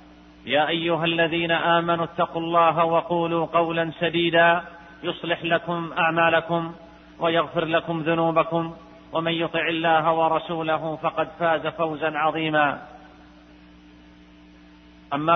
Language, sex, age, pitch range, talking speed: Arabic, male, 40-59, 165-220 Hz, 95 wpm